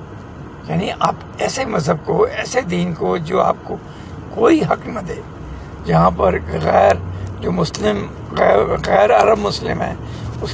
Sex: male